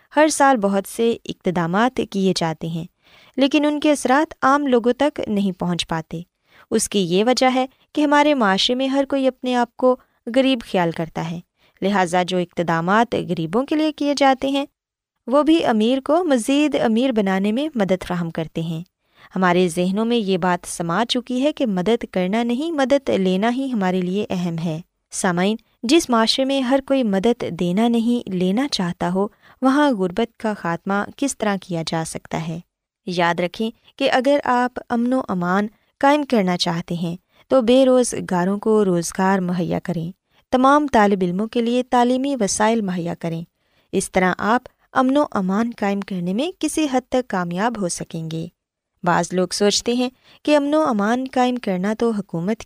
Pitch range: 180-260 Hz